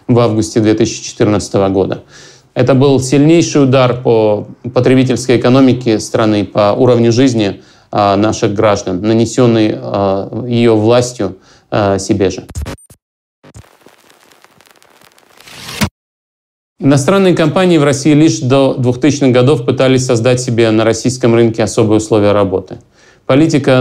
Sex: male